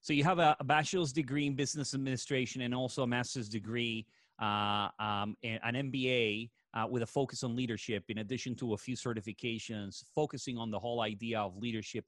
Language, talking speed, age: English, 190 wpm, 30-49